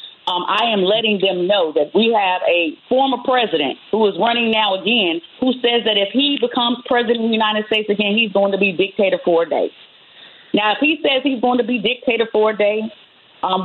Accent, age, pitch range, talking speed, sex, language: American, 40-59, 205-255 Hz, 220 wpm, female, English